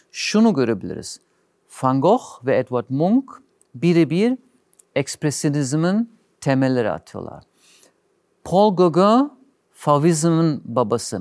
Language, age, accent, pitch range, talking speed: Turkish, 50-69, native, 125-190 Hz, 80 wpm